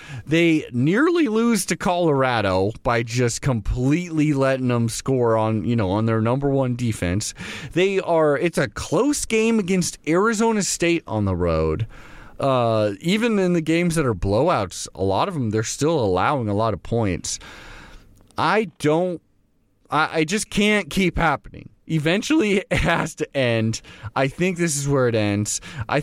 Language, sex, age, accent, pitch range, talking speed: English, male, 30-49, American, 105-160 Hz, 165 wpm